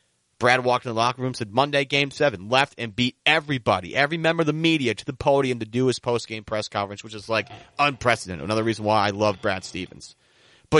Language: English